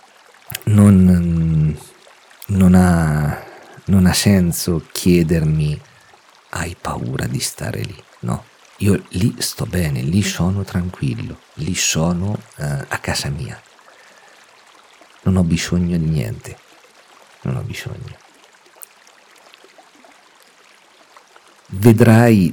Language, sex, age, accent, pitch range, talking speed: Italian, male, 50-69, native, 75-100 Hz, 85 wpm